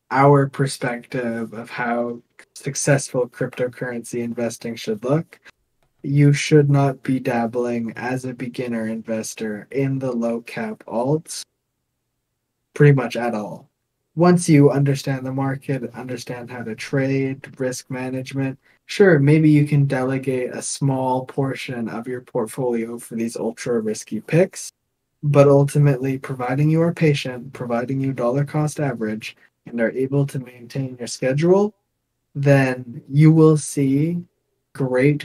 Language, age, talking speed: English, 20-39, 130 wpm